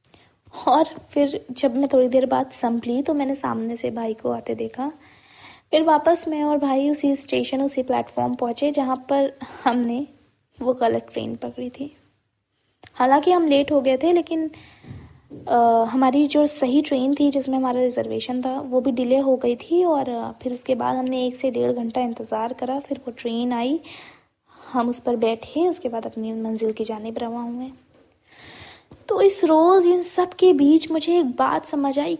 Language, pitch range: Hindi, 245-300 Hz